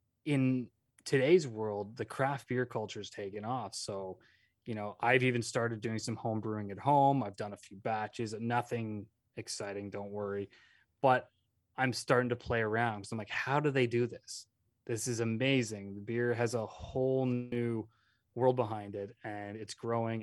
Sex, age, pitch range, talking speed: male, 20-39, 105-120 Hz, 180 wpm